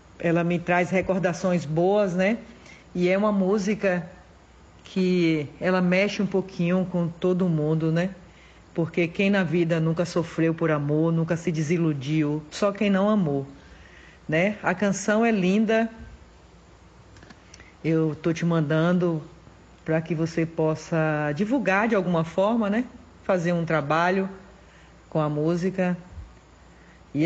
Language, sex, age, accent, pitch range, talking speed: Portuguese, female, 40-59, Brazilian, 155-190 Hz, 130 wpm